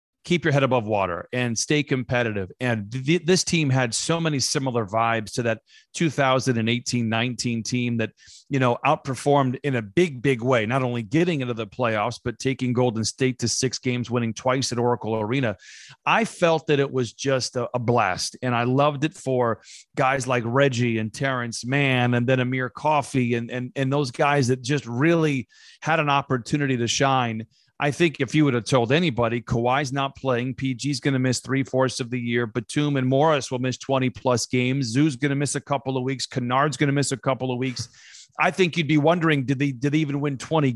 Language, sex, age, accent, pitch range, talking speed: English, male, 30-49, American, 125-145 Hz, 200 wpm